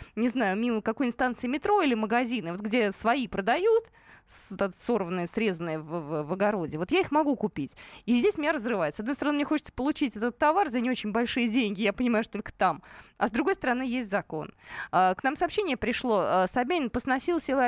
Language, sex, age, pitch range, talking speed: Russian, female, 20-39, 195-275 Hz, 195 wpm